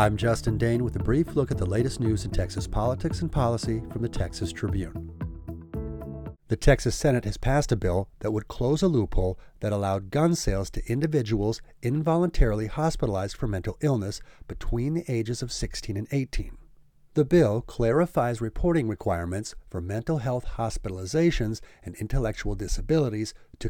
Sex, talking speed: male, 160 wpm